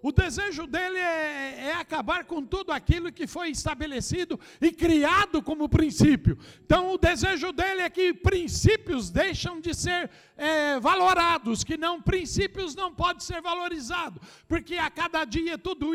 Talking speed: 150 wpm